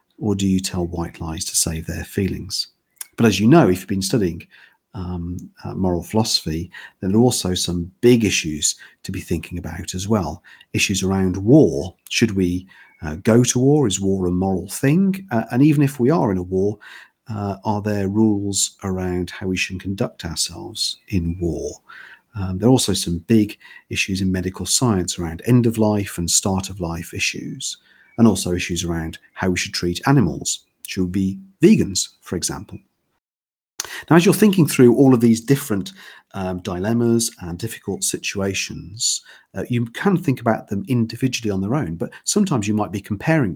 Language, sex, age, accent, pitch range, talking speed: English, male, 50-69, British, 90-115 Hz, 185 wpm